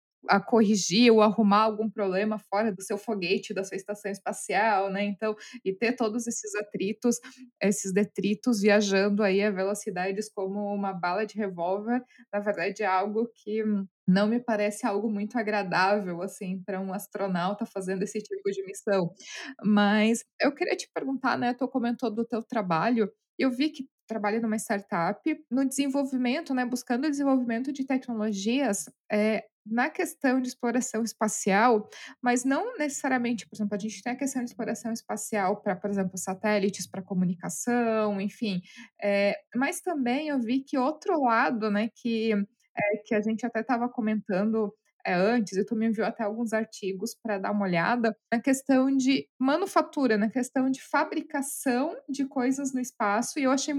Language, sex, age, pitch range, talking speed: Portuguese, female, 20-39, 205-255 Hz, 160 wpm